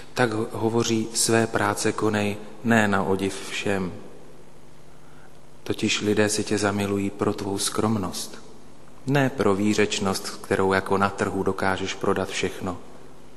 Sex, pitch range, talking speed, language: male, 95-110 Hz, 120 wpm, Slovak